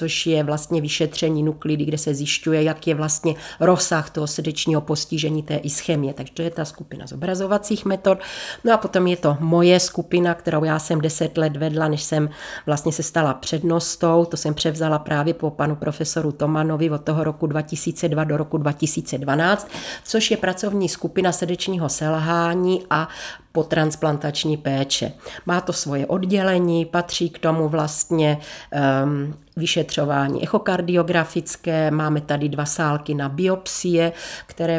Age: 40-59